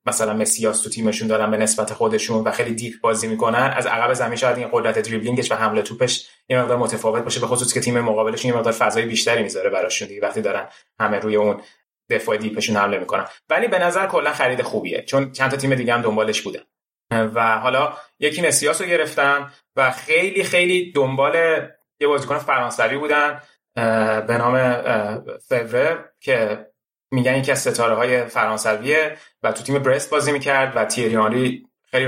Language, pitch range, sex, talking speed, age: Persian, 115-140 Hz, male, 175 wpm, 30-49